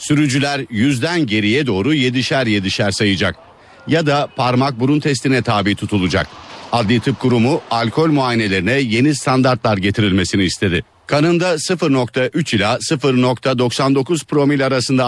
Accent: native